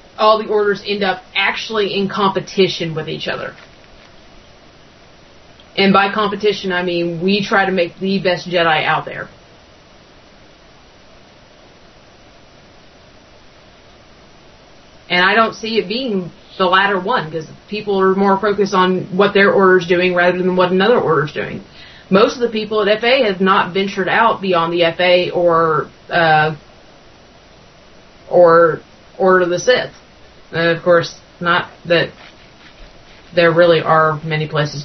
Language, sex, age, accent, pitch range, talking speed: English, female, 30-49, American, 165-210 Hz, 140 wpm